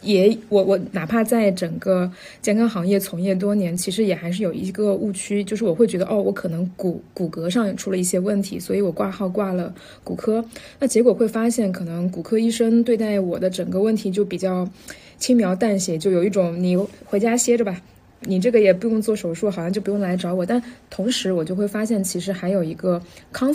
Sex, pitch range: female, 180-225 Hz